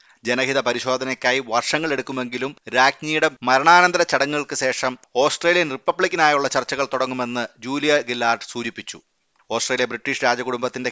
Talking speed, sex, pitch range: 100 wpm, male, 125-145 Hz